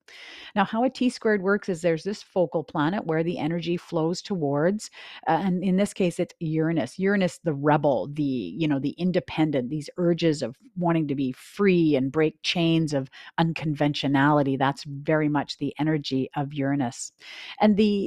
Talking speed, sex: 175 wpm, female